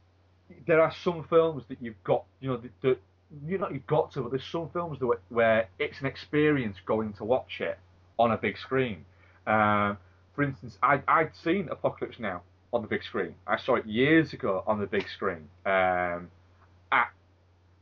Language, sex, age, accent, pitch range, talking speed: English, male, 30-49, British, 90-125 Hz, 190 wpm